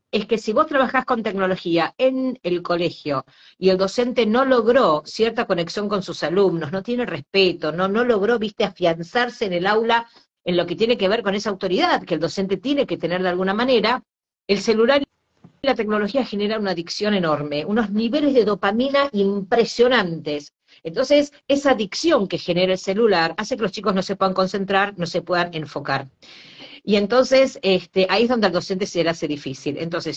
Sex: female